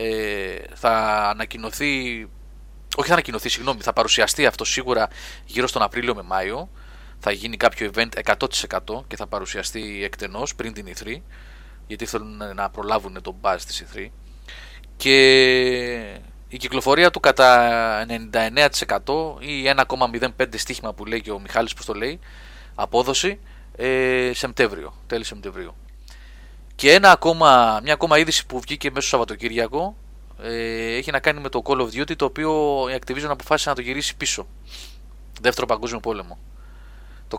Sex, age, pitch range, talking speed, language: male, 30-49, 100-135 Hz, 140 wpm, Greek